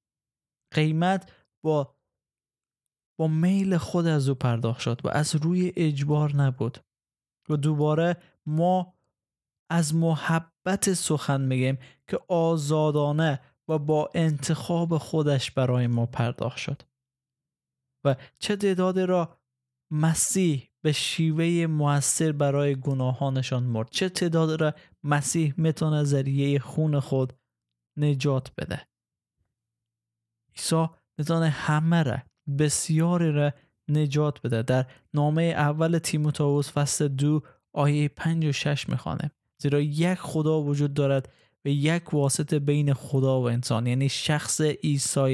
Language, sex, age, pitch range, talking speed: Persian, male, 20-39, 135-160 Hz, 115 wpm